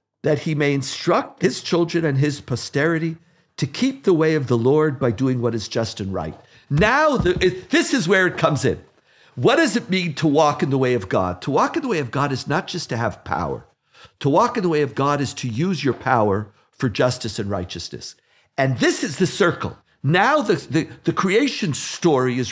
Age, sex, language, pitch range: 50-69, male, English, 130-185 Hz